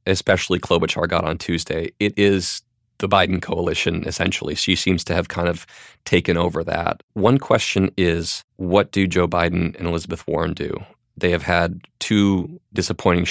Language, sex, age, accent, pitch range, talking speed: English, male, 30-49, American, 85-100 Hz, 160 wpm